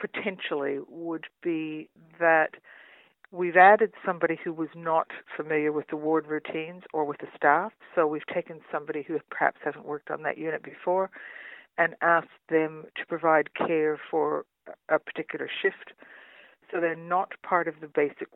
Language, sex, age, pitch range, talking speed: English, female, 60-79, 150-175 Hz, 155 wpm